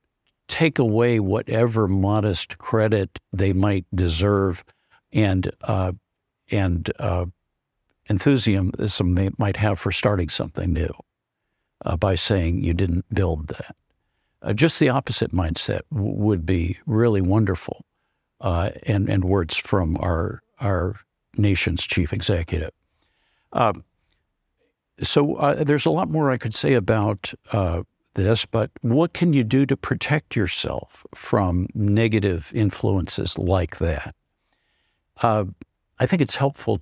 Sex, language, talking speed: male, English, 125 wpm